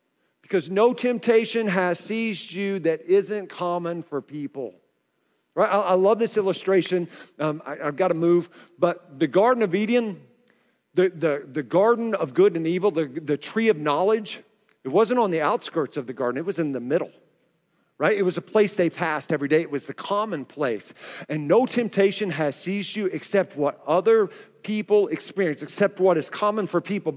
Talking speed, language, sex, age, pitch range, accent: 185 wpm, English, male, 50-69, 175-230 Hz, American